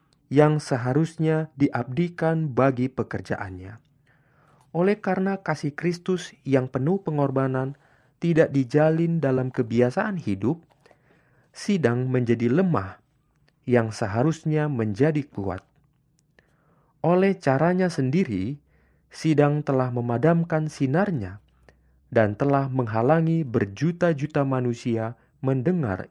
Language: Indonesian